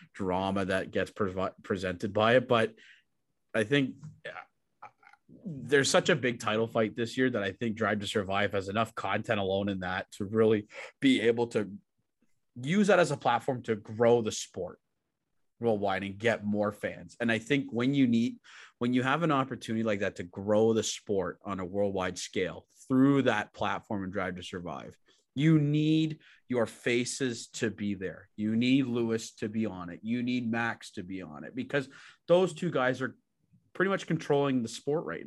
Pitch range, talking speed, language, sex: 105-125 Hz, 185 wpm, English, male